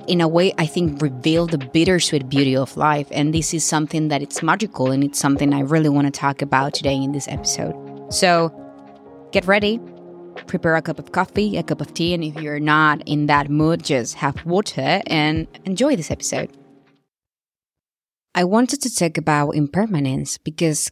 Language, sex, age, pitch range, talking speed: English, female, 20-39, 140-170 Hz, 185 wpm